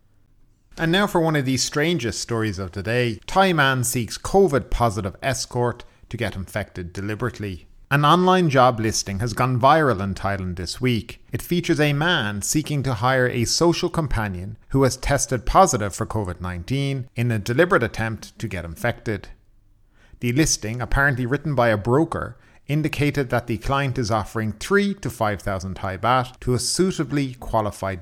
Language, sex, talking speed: English, male, 165 wpm